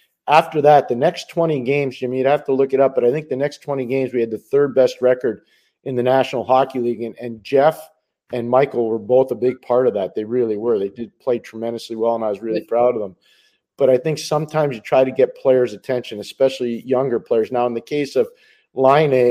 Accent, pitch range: American, 115-135 Hz